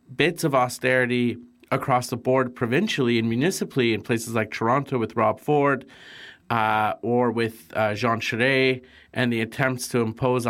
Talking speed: 155 wpm